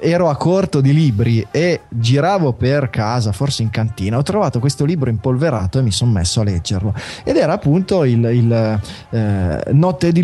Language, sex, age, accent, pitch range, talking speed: Italian, male, 20-39, native, 120-160 Hz, 180 wpm